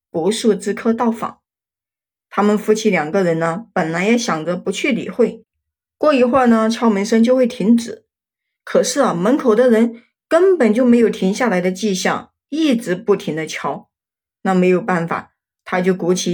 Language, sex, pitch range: Chinese, female, 185-240 Hz